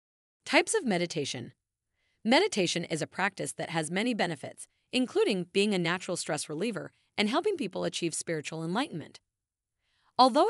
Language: English